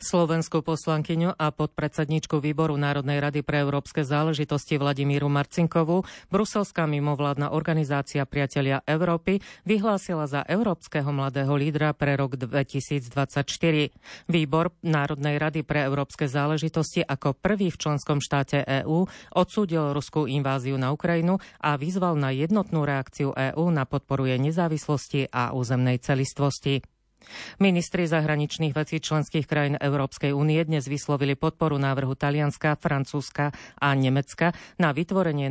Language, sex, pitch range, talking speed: Slovak, female, 140-160 Hz, 120 wpm